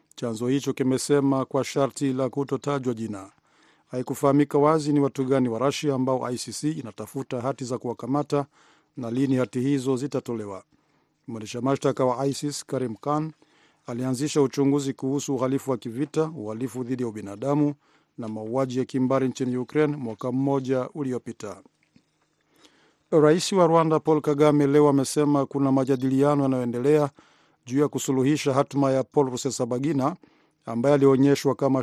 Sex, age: male, 50-69